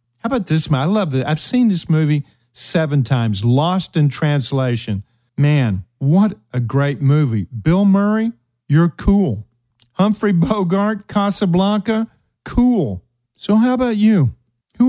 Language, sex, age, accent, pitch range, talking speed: English, male, 50-69, American, 120-175 Hz, 135 wpm